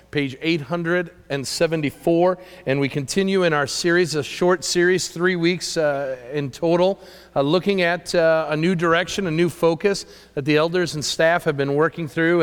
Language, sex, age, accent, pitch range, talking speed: English, male, 40-59, American, 140-175 Hz, 170 wpm